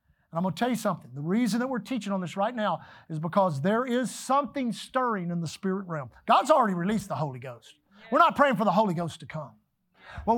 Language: English